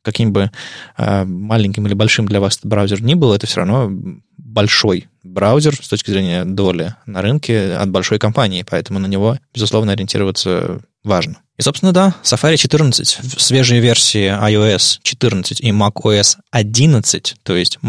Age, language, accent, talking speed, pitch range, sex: 20-39, Russian, native, 150 wpm, 105-130 Hz, male